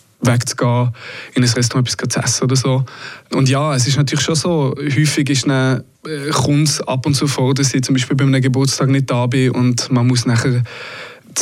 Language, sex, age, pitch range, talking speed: German, male, 20-39, 125-145 Hz, 210 wpm